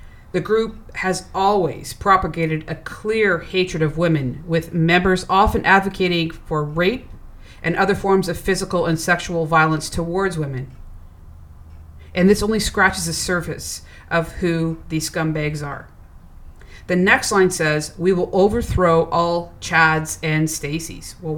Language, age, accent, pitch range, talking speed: English, 40-59, American, 155-185 Hz, 140 wpm